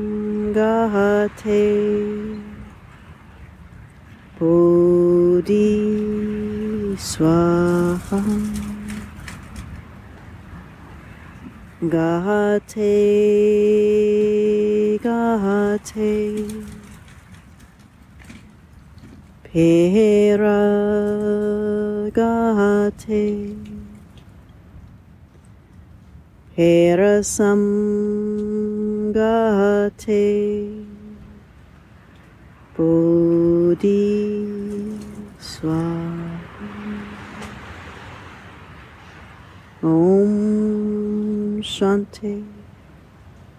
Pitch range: 160-210 Hz